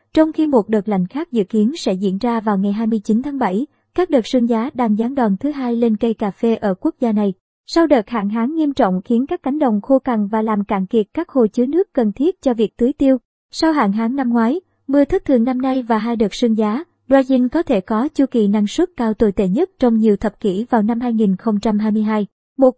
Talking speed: 250 wpm